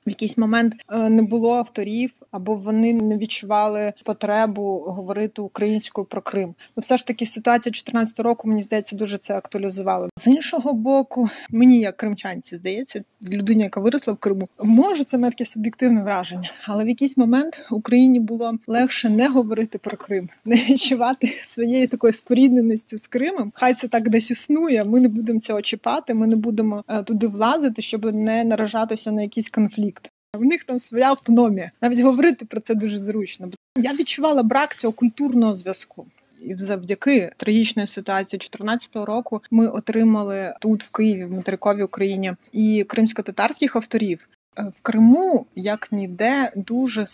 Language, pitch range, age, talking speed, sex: Ukrainian, 210-245 Hz, 20-39, 155 wpm, female